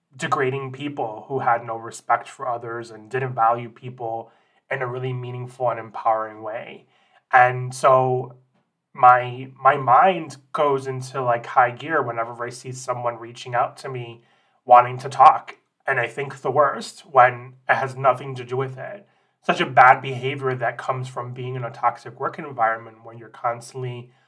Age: 30-49